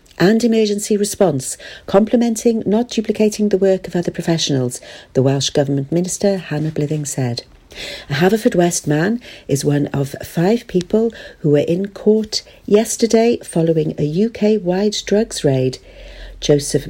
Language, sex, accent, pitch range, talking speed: English, female, British, 140-205 Hz, 140 wpm